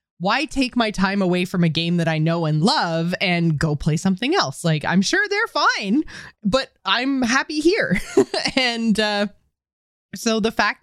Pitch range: 160-205 Hz